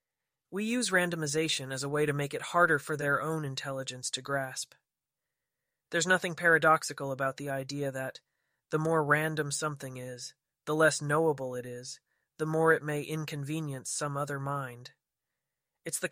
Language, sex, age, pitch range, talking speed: English, male, 30-49, 130-155 Hz, 160 wpm